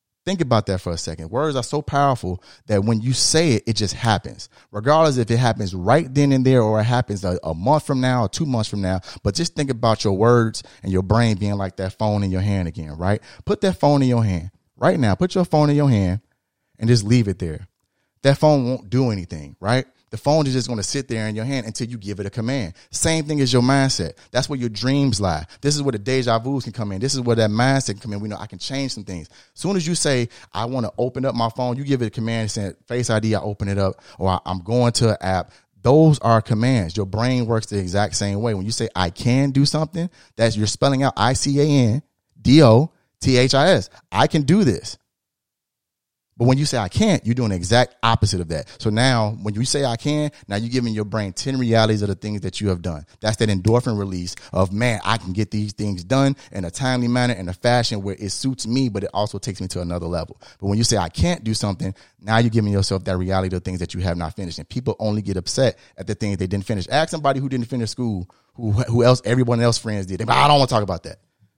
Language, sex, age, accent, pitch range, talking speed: English, male, 30-49, American, 100-130 Hz, 260 wpm